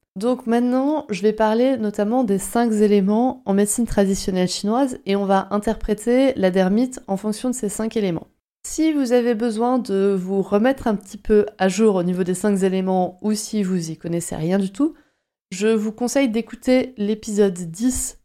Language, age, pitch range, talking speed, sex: French, 30-49, 185-225 Hz, 185 wpm, female